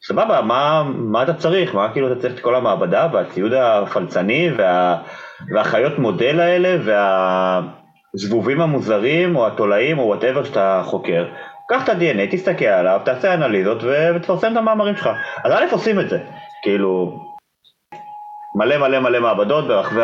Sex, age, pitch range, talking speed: male, 30-49, 115-190 Hz, 145 wpm